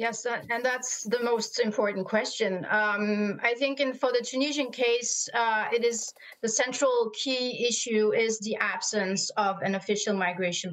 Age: 30-49